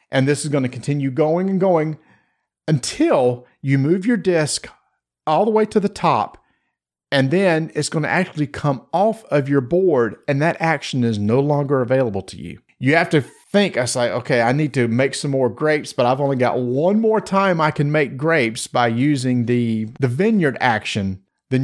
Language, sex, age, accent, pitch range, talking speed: English, male, 40-59, American, 125-160 Hz, 195 wpm